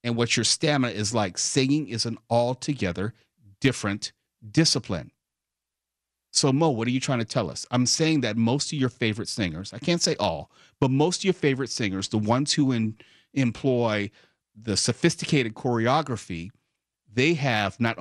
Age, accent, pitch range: 40-59, American, 105-145 Hz